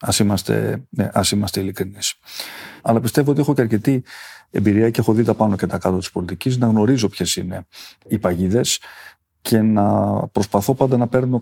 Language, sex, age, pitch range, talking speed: Greek, male, 40-59, 100-125 Hz, 175 wpm